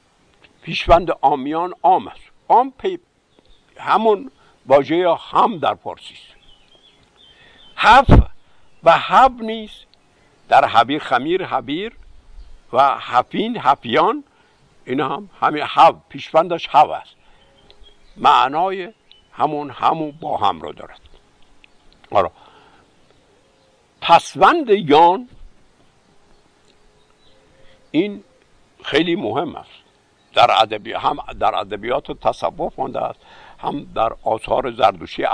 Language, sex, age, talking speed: Persian, male, 60-79, 85 wpm